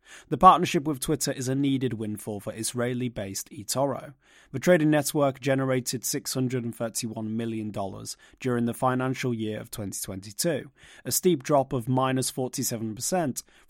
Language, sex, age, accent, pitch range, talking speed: English, male, 30-49, British, 115-140 Hz, 125 wpm